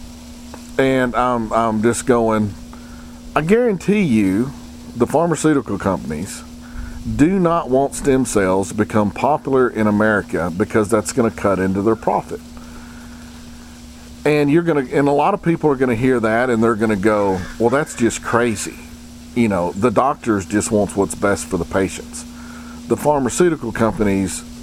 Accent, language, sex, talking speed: American, English, male, 160 wpm